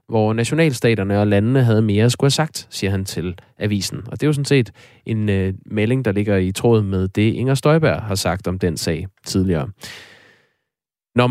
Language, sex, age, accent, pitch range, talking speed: Danish, male, 20-39, native, 105-135 Hz, 200 wpm